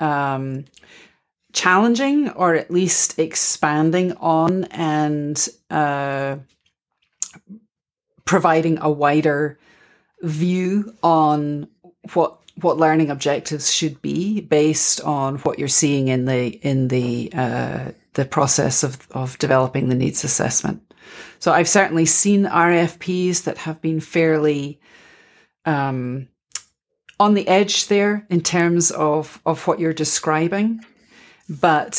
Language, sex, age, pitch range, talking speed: English, female, 40-59, 145-175 Hz, 115 wpm